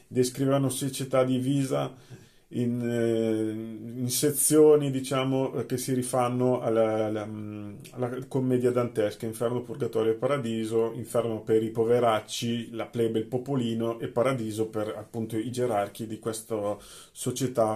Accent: native